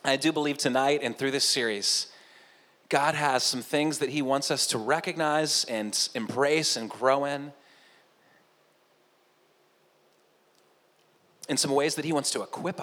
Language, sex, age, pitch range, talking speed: English, male, 30-49, 125-150 Hz, 145 wpm